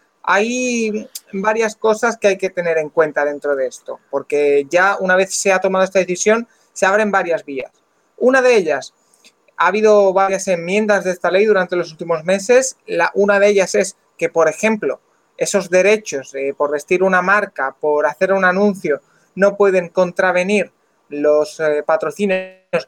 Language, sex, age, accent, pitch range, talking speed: Spanish, male, 30-49, Spanish, 165-215 Hz, 170 wpm